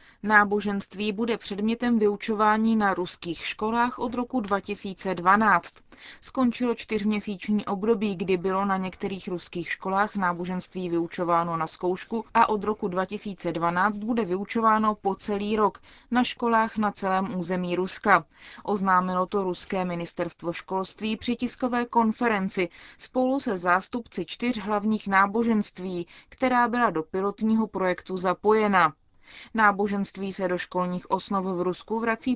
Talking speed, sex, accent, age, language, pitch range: 120 wpm, female, native, 20-39, Czech, 185-225 Hz